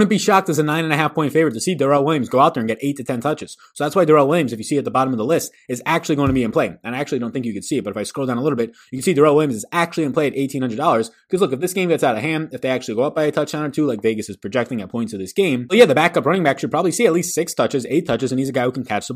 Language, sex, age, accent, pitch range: English, male, 20-39, American, 115-150 Hz